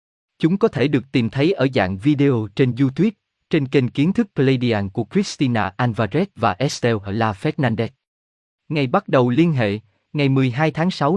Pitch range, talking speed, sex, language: 115-160 Hz, 165 wpm, male, Vietnamese